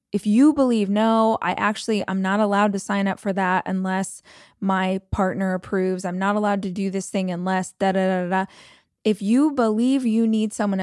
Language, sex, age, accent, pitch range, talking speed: English, female, 20-39, American, 195-230 Hz, 185 wpm